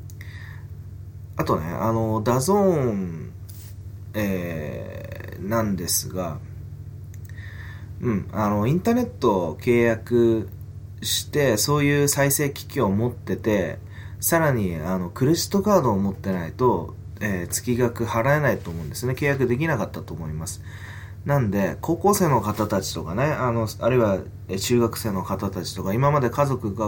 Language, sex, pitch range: Japanese, male, 100-125 Hz